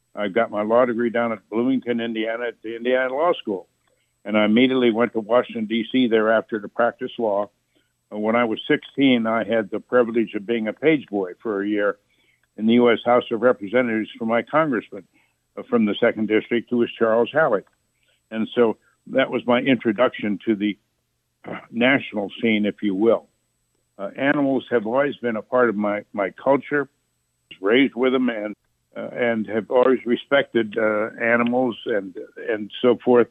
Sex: male